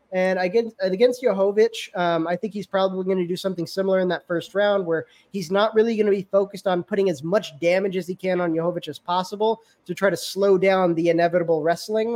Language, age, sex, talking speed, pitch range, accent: English, 20-39, male, 225 wpm, 175-215 Hz, American